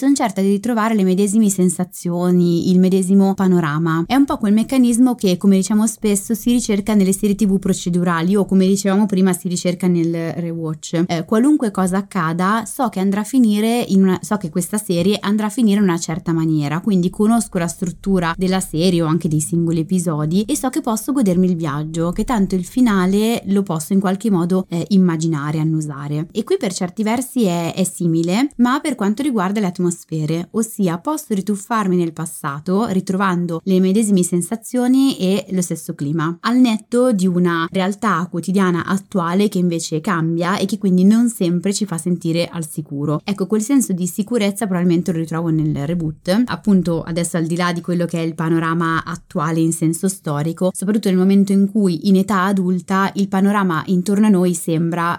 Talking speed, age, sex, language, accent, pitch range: 180 wpm, 20-39, female, Italian, native, 170-205 Hz